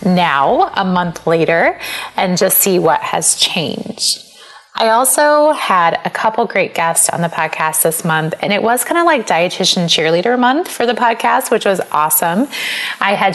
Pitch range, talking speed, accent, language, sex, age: 175-210 Hz, 175 wpm, American, English, female, 20-39